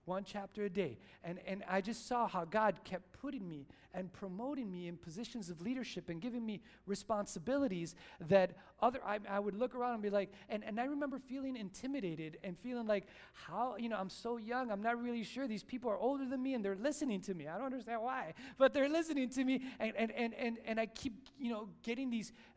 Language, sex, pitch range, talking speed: English, male, 200-255 Hz, 225 wpm